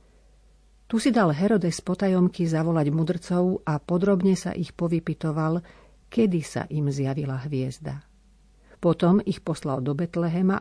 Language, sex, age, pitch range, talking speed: Slovak, female, 50-69, 150-185 Hz, 125 wpm